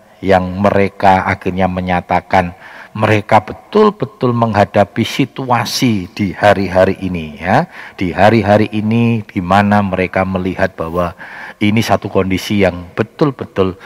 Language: Indonesian